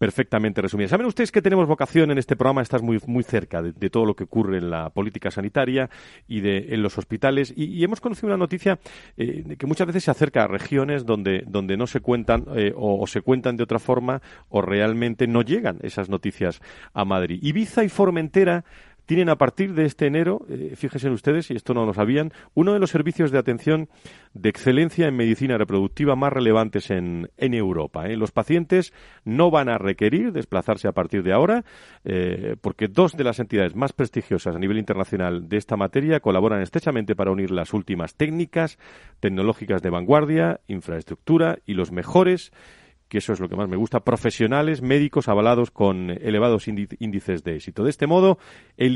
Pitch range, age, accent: 100-145 Hz, 40-59, Spanish